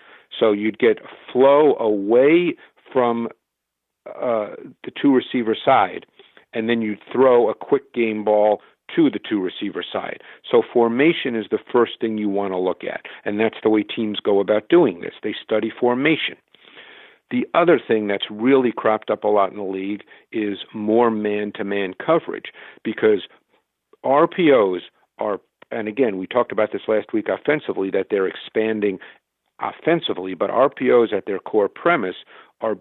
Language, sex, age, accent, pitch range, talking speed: English, male, 50-69, American, 105-125 Hz, 155 wpm